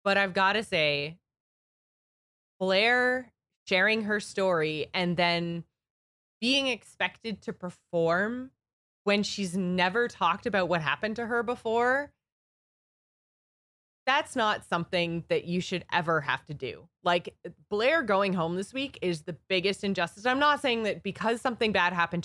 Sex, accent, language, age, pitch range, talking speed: female, American, English, 20-39, 175-225 Hz, 145 wpm